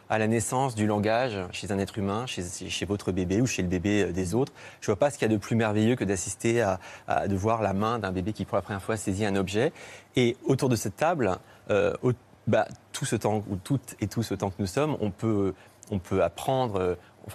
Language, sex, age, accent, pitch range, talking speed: French, male, 30-49, French, 100-130 Hz, 255 wpm